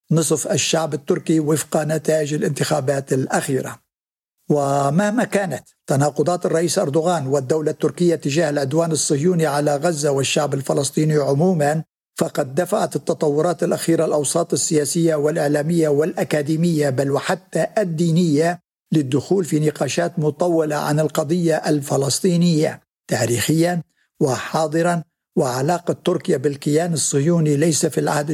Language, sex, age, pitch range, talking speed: Arabic, male, 60-79, 150-175 Hz, 105 wpm